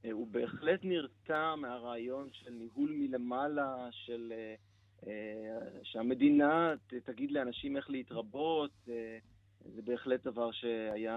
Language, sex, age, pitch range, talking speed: Hebrew, male, 30-49, 115-150 Hz, 90 wpm